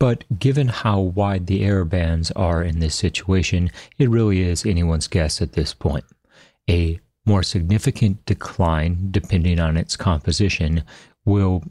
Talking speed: 145 wpm